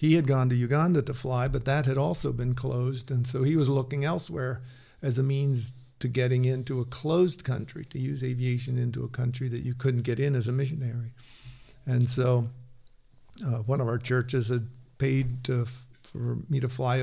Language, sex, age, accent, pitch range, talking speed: English, male, 50-69, American, 125-135 Hz, 195 wpm